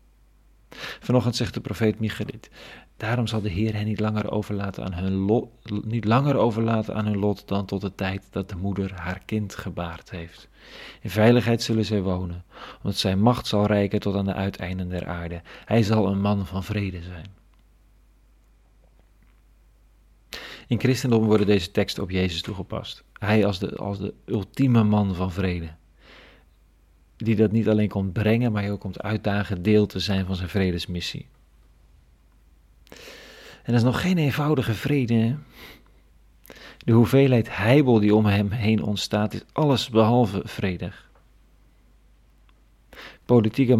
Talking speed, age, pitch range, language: 150 wpm, 40-59, 95-115 Hz, Dutch